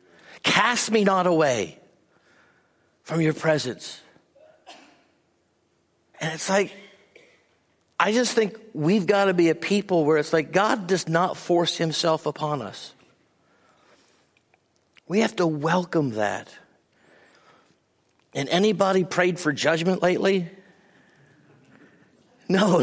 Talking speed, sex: 110 wpm, male